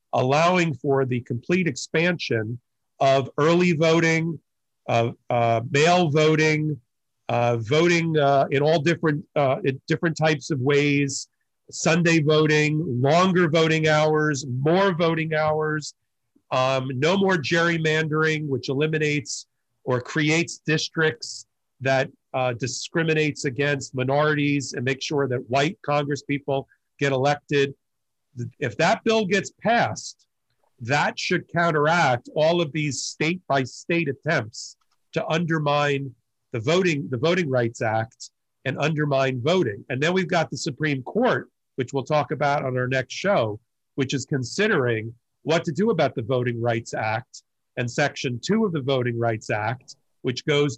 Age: 40-59